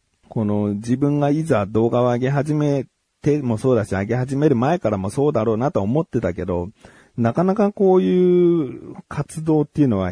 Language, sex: Japanese, male